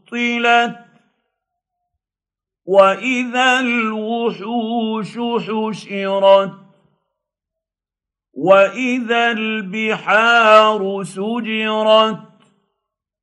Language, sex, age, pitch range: Arabic, male, 50-69, 195-235 Hz